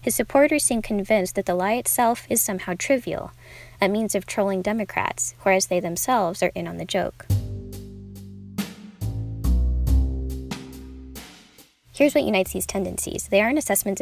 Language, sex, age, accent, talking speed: English, female, 10-29, American, 135 wpm